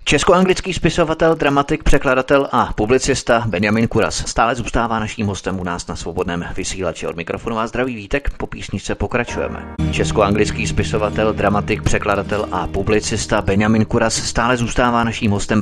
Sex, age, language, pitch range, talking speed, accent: male, 30-49, Czech, 95-125 Hz, 140 wpm, native